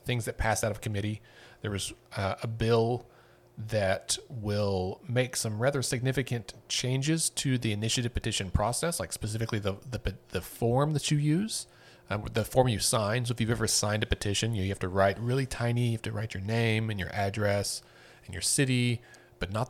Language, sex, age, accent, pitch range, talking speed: English, male, 40-59, American, 95-120 Hz, 195 wpm